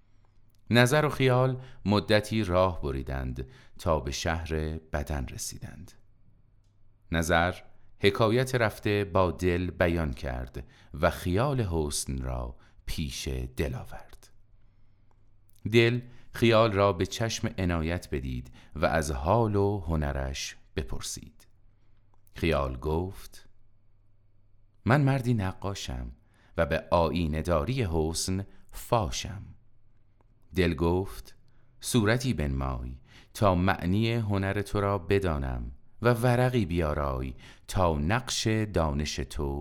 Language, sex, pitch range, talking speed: Persian, male, 80-105 Hz, 100 wpm